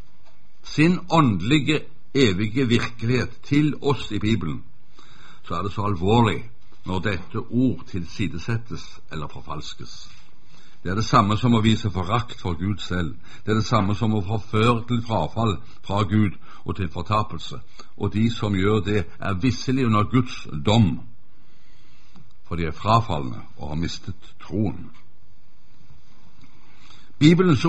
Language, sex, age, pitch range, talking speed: Danish, male, 60-79, 100-135 Hz, 135 wpm